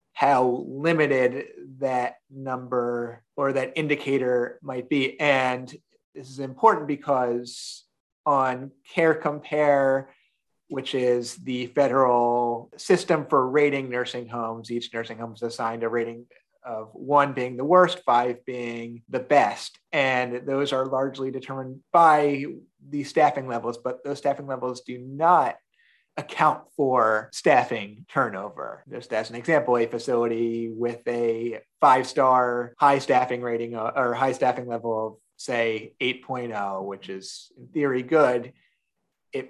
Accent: American